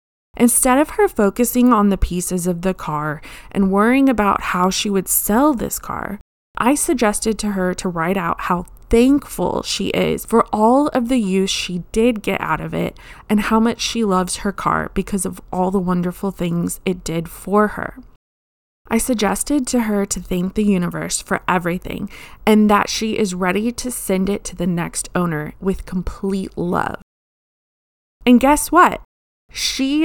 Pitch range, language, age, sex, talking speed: 180-240 Hz, English, 20-39, female, 175 wpm